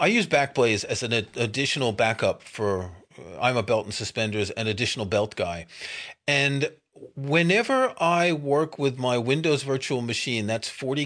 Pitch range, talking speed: 120-170 Hz, 150 wpm